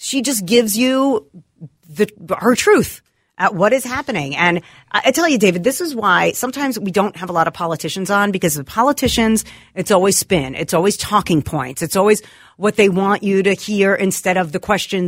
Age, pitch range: 40-59, 160-210 Hz